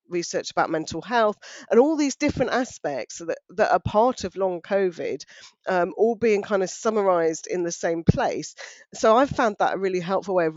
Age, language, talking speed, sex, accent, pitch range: 40-59, English, 200 wpm, female, British, 170-225 Hz